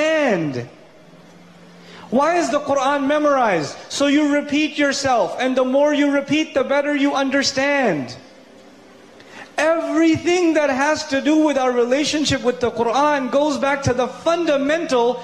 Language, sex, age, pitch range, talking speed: English, male, 30-49, 195-275 Hz, 135 wpm